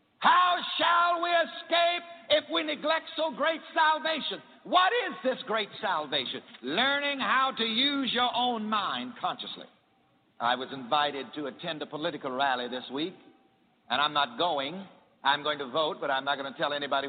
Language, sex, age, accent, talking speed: English, male, 60-79, American, 170 wpm